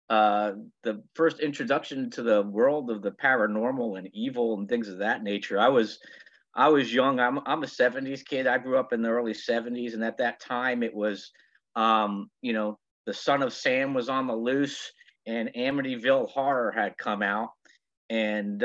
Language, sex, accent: English, male, American